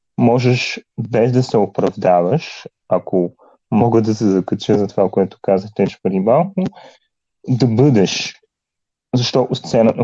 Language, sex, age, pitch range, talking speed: Bulgarian, male, 30-49, 95-130 Hz, 125 wpm